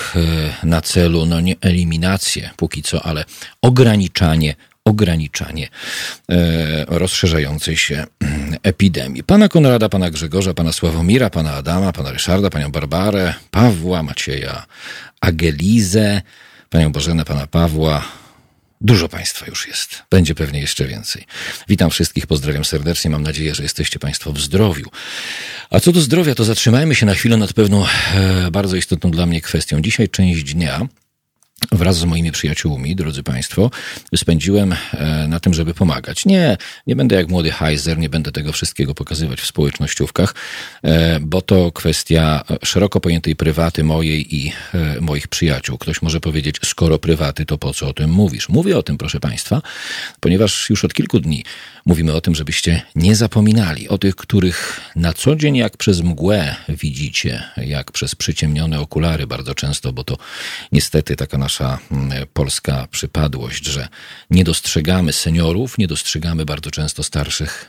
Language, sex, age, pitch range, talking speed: Polish, male, 40-59, 75-95 Hz, 145 wpm